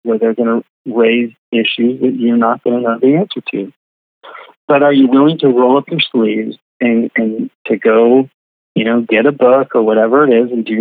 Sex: male